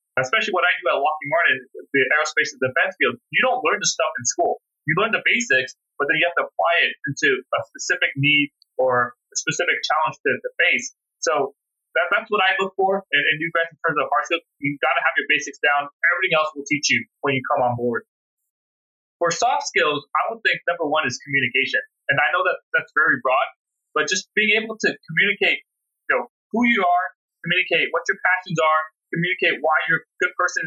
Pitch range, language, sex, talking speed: 150-210 Hz, English, male, 220 wpm